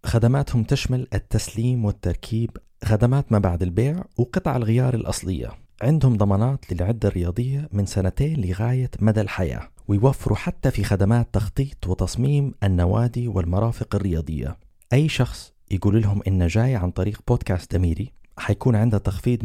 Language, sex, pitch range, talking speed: Arabic, male, 95-125 Hz, 130 wpm